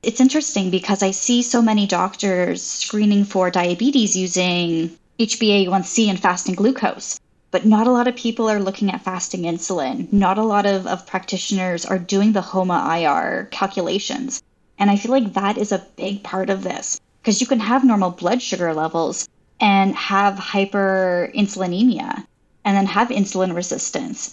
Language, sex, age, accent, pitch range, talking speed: English, female, 10-29, American, 185-220 Hz, 160 wpm